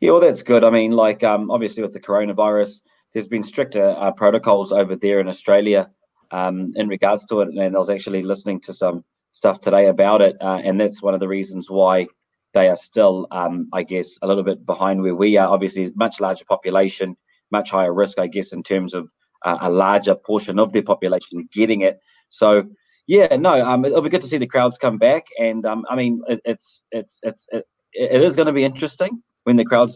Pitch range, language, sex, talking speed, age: 100-120 Hz, English, male, 220 wpm, 20-39